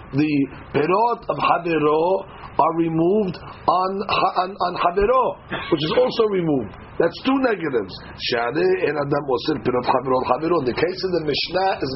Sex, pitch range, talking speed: male, 155-220 Hz, 130 wpm